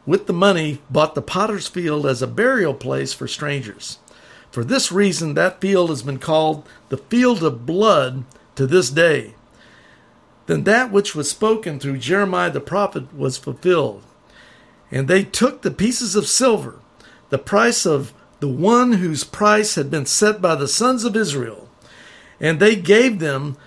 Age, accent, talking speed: 50-69, American, 165 wpm